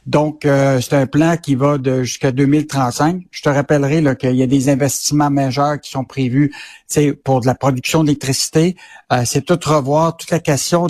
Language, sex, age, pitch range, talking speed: French, male, 60-79, 140-165 Hz, 195 wpm